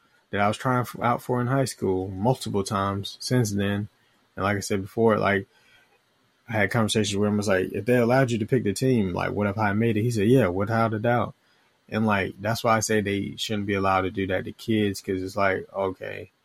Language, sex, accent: English, male, American